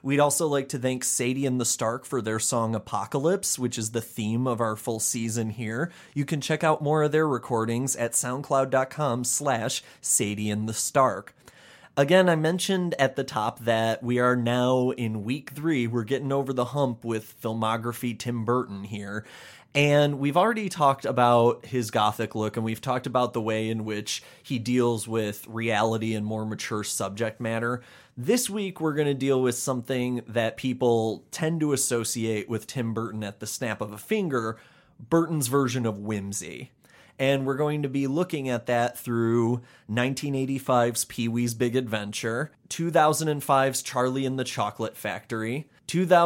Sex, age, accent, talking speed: male, 30-49, American, 170 wpm